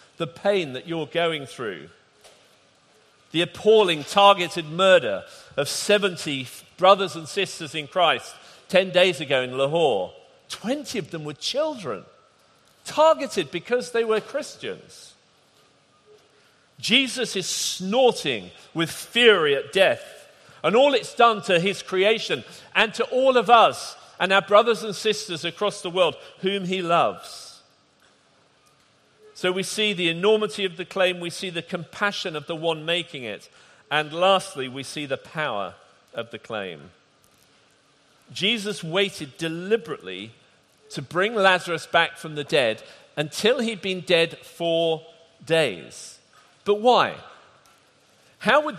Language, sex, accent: English, male, British